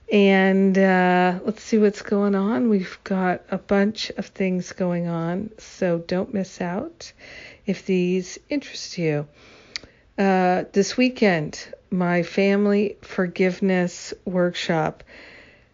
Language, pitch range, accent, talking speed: English, 170-195 Hz, American, 115 wpm